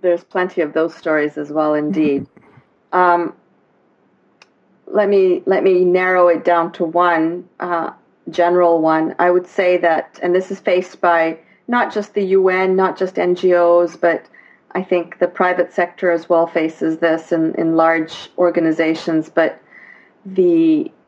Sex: female